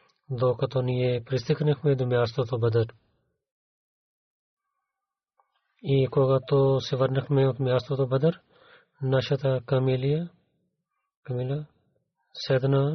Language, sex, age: Bulgarian, male, 30-49